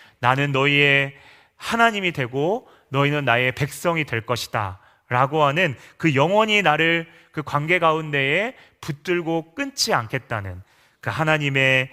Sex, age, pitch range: male, 30-49, 115-155 Hz